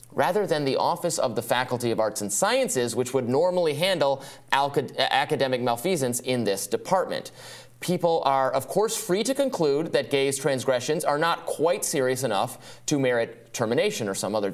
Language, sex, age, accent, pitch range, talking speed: English, male, 30-49, American, 125-170 Hz, 170 wpm